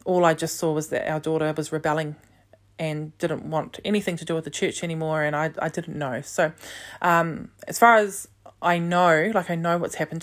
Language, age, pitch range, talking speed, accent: English, 20-39, 160-200 Hz, 215 wpm, Australian